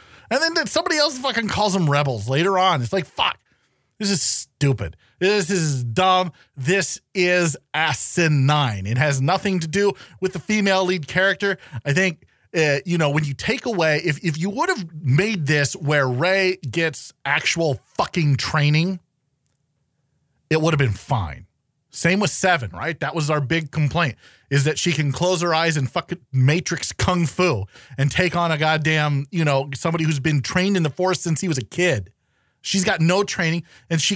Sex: male